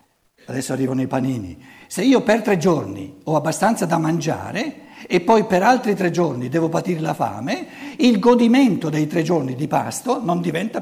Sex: male